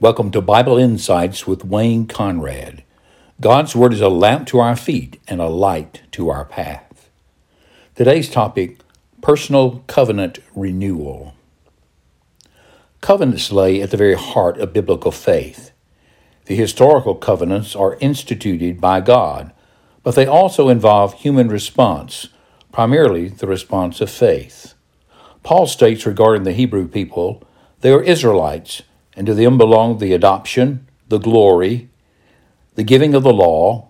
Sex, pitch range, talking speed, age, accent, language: male, 100-125 Hz, 135 wpm, 60-79, American, English